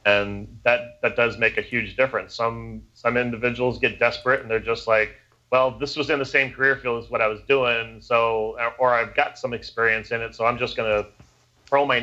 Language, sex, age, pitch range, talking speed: English, male, 30-49, 110-125 Hz, 225 wpm